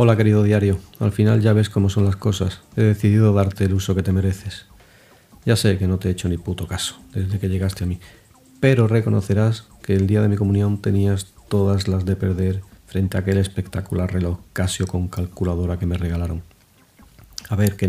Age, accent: 40-59, Spanish